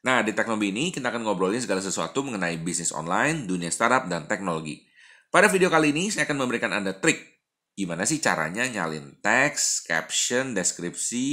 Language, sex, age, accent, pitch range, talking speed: Indonesian, male, 30-49, native, 90-135 Hz, 170 wpm